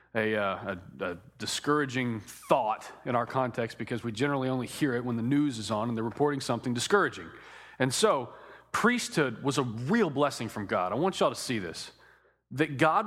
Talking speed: 190 wpm